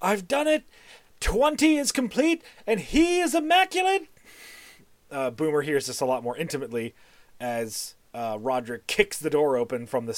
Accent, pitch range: American, 125-175 Hz